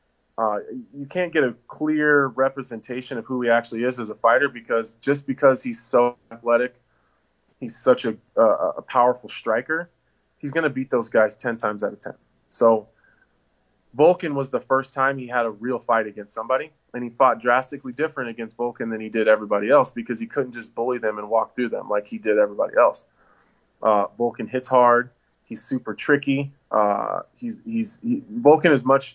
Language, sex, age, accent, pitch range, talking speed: English, male, 20-39, American, 115-140 Hz, 190 wpm